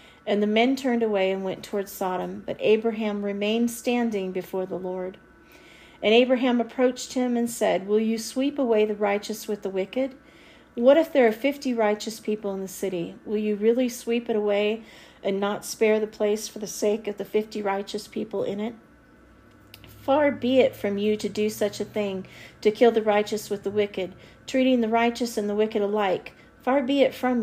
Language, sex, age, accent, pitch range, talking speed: English, female, 40-59, American, 210-245 Hz, 195 wpm